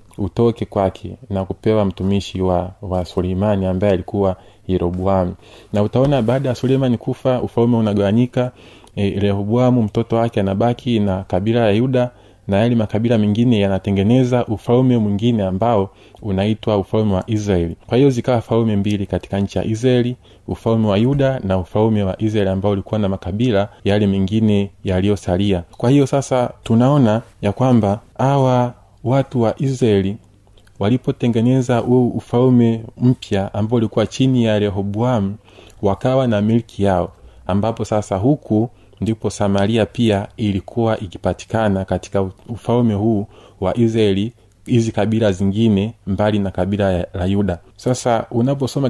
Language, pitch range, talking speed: Swahili, 100-120 Hz, 130 wpm